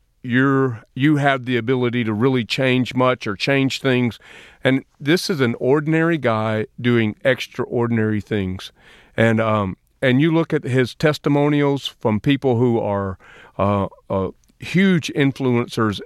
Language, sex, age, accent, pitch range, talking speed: English, male, 40-59, American, 110-135 Hz, 140 wpm